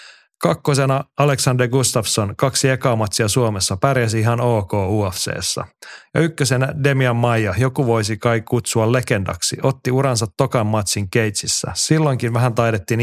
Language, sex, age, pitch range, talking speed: Finnish, male, 30-49, 105-135 Hz, 130 wpm